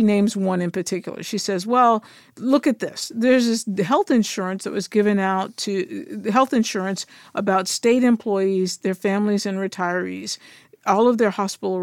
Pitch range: 195-240 Hz